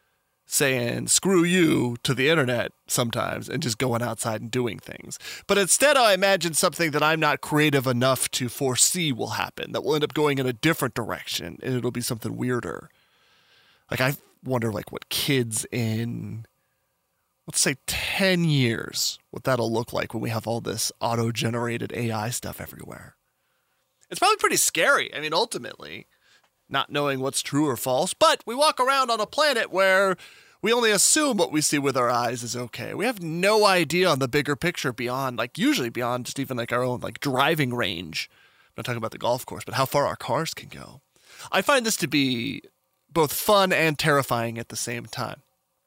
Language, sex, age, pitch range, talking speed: English, male, 30-49, 120-170 Hz, 190 wpm